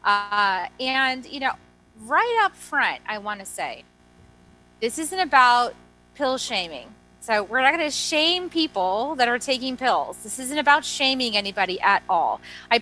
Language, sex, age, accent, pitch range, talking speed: English, female, 30-49, American, 185-260 Hz, 165 wpm